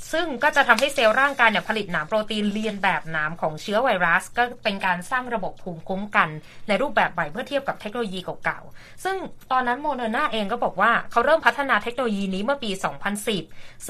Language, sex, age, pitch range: Thai, female, 20-39, 185-250 Hz